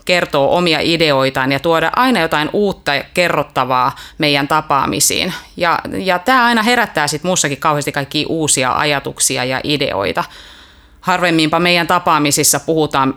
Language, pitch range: Finnish, 140-175 Hz